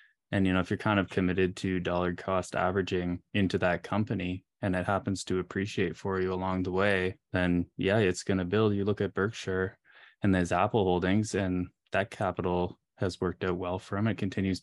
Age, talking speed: 10-29, 205 wpm